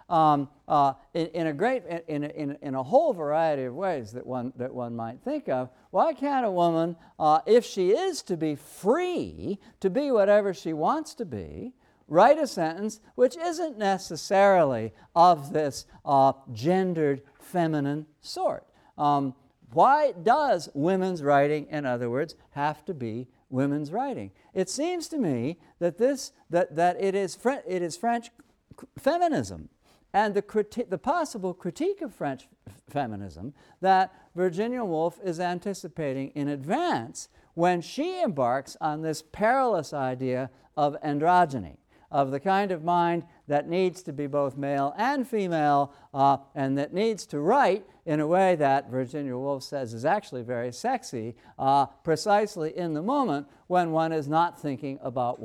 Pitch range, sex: 140-195 Hz, male